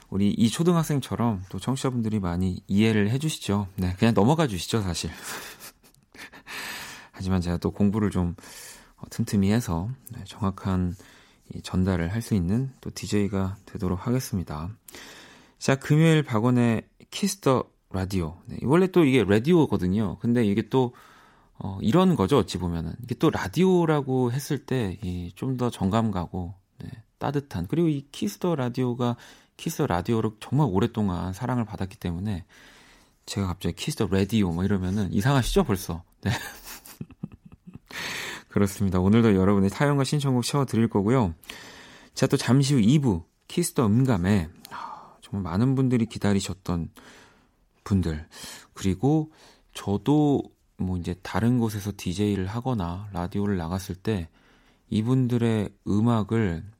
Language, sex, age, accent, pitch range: Korean, male, 30-49, native, 95-130 Hz